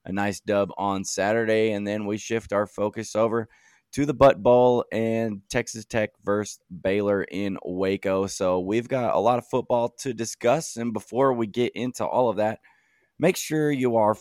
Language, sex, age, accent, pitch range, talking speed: English, male, 20-39, American, 95-115 Hz, 185 wpm